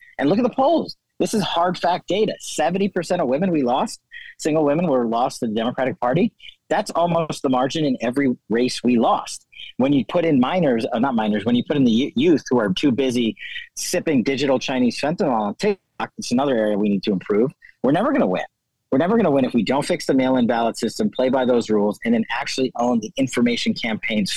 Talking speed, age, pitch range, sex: 220 wpm, 40-59, 130-200 Hz, male